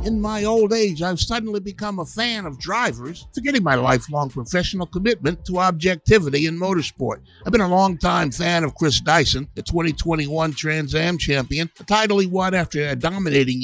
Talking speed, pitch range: 175 wpm, 155-195 Hz